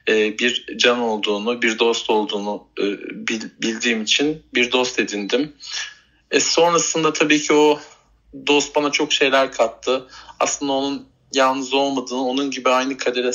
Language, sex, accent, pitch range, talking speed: Turkish, male, native, 120-145 Hz, 130 wpm